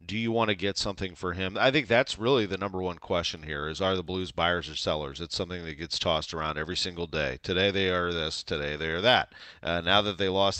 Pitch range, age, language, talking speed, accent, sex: 90-110 Hz, 40-59, English, 260 wpm, American, male